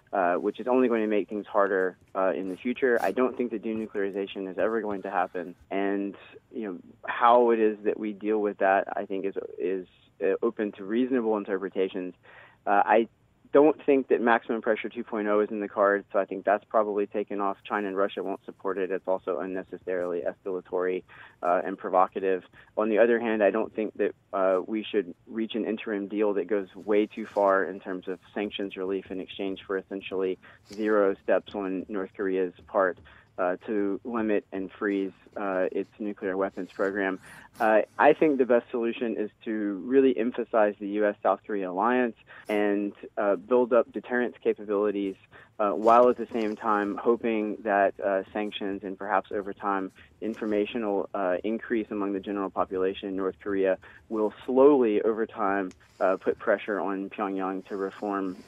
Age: 20-39